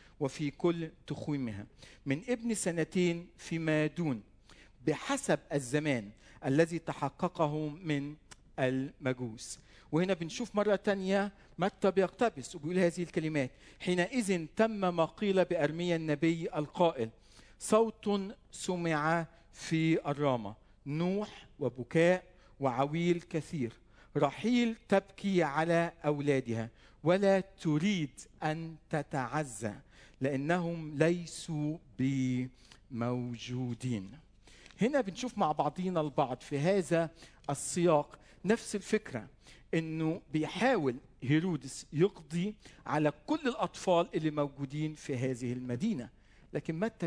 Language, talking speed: Arabic, 95 wpm